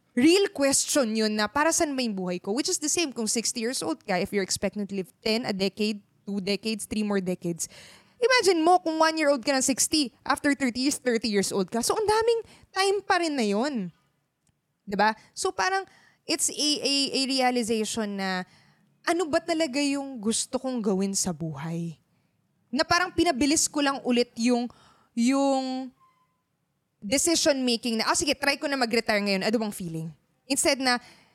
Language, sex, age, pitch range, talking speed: Filipino, female, 20-39, 205-310 Hz, 180 wpm